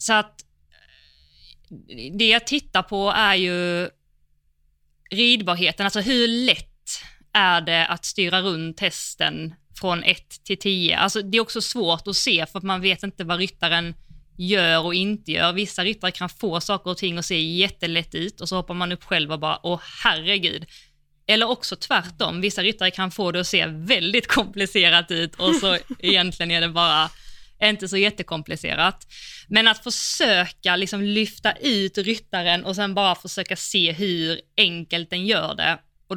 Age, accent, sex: 20-39, native, female